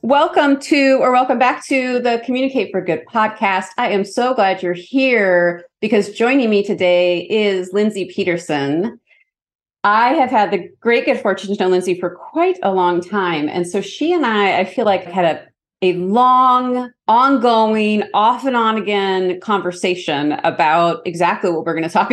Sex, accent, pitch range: female, American, 175-230 Hz